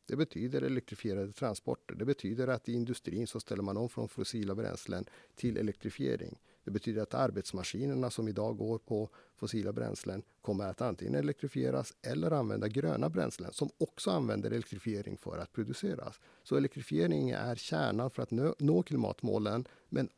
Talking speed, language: 155 wpm, Swedish